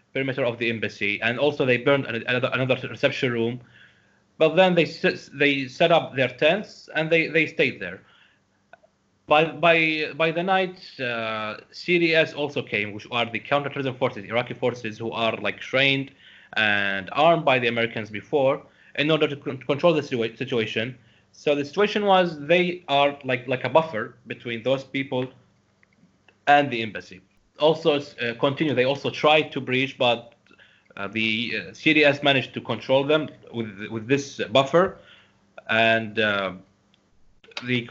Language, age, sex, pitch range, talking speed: English, 30-49, male, 115-150 Hz, 155 wpm